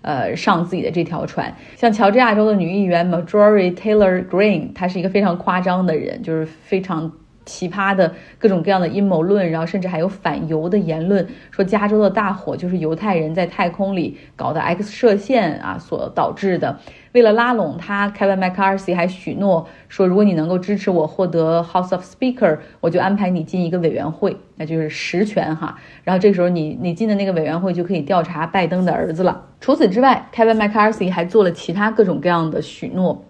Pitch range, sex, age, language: 170-205 Hz, female, 30-49, Chinese